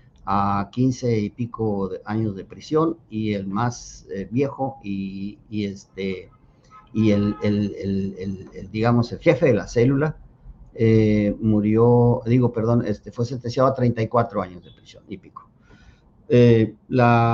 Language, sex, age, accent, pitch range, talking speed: Spanish, male, 50-69, Mexican, 105-130 Hz, 150 wpm